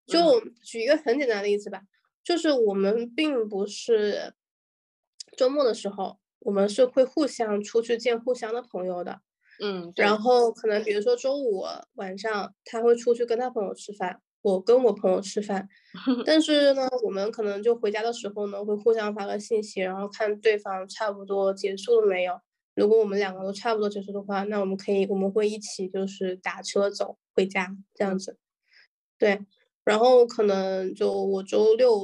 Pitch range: 200-240 Hz